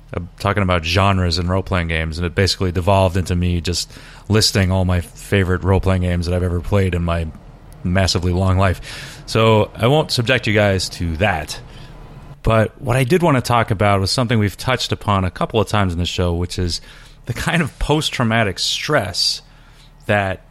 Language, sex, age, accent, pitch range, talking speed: English, male, 30-49, American, 100-145 Hz, 190 wpm